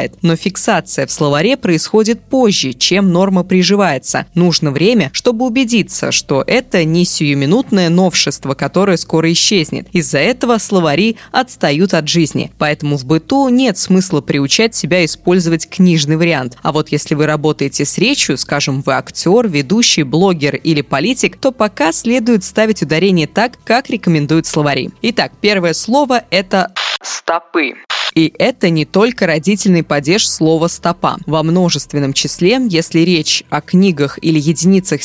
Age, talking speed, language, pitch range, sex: 20-39, 140 wpm, Russian, 155-205 Hz, female